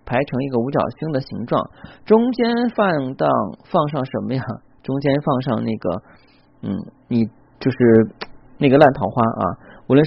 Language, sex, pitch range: Chinese, male, 115-145 Hz